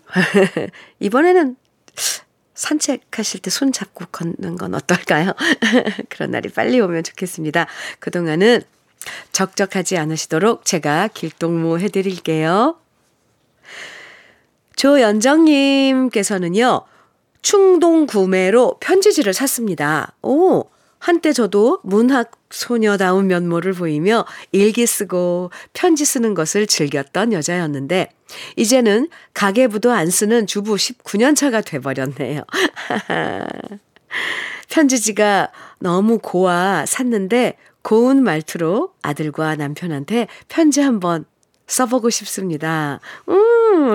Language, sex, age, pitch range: Korean, female, 40-59, 175-255 Hz